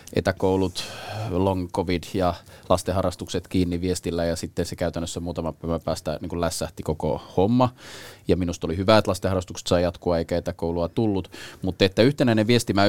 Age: 20-39